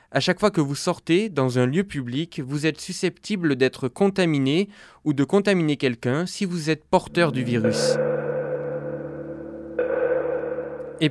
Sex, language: male, French